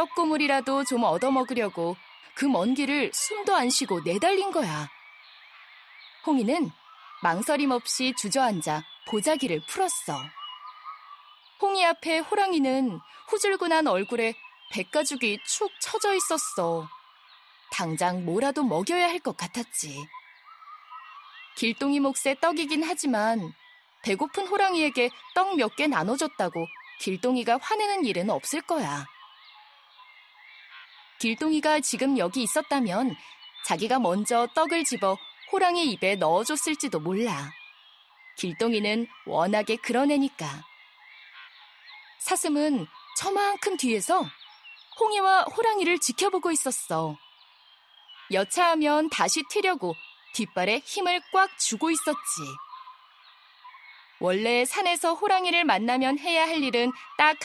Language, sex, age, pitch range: Korean, female, 20-39, 230-350 Hz